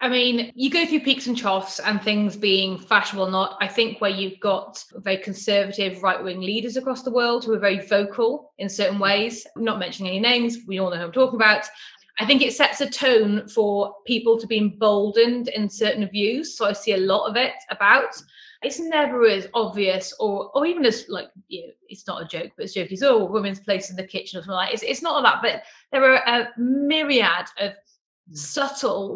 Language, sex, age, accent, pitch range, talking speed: English, female, 30-49, British, 190-235 Hz, 220 wpm